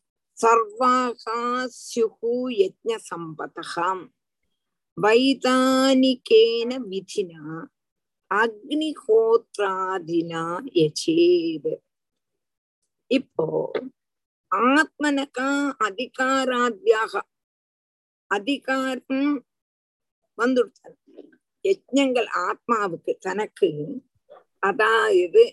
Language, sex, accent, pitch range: Tamil, female, native, 225-295 Hz